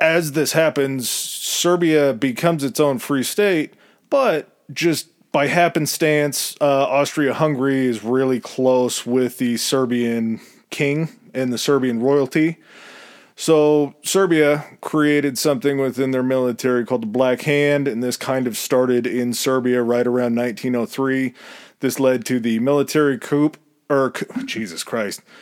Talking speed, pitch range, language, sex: 130 wpm, 125-145 Hz, English, male